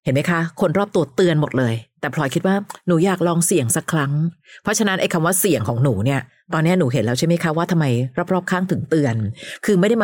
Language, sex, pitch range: Thai, female, 140-185 Hz